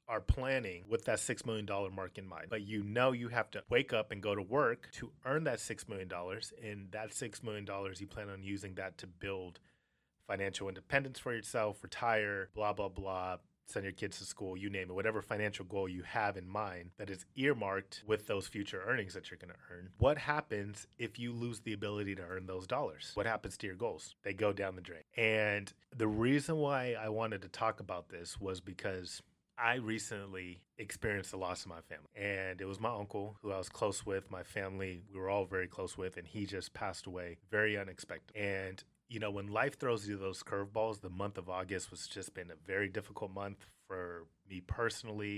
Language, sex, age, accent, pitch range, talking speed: English, male, 30-49, American, 95-110 Hz, 215 wpm